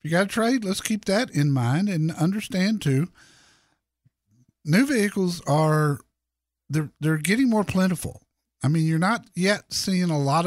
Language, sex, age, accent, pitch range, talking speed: English, male, 50-69, American, 130-175 Hz, 160 wpm